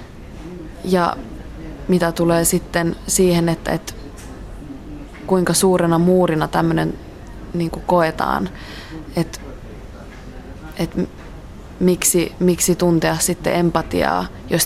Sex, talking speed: female, 80 wpm